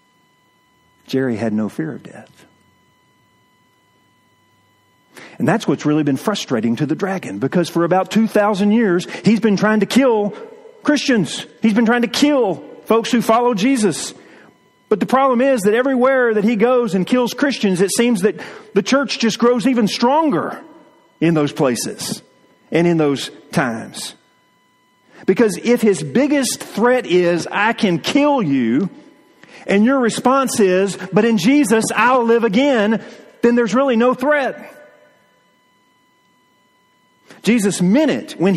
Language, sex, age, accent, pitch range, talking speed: English, male, 40-59, American, 175-245 Hz, 145 wpm